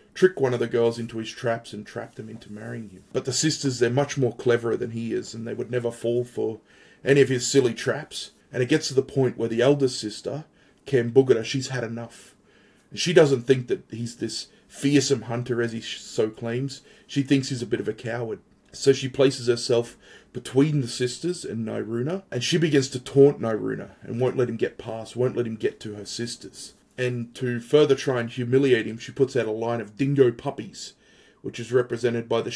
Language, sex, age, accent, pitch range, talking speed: English, male, 30-49, Australian, 115-135 Hz, 215 wpm